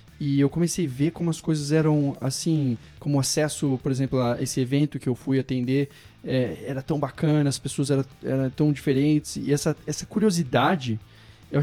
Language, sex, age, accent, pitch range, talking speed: Portuguese, male, 20-39, Brazilian, 130-155 Hz, 185 wpm